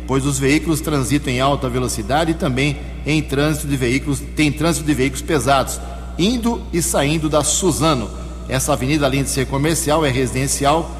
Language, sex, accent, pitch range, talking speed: Portuguese, male, Brazilian, 120-155 Hz, 170 wpm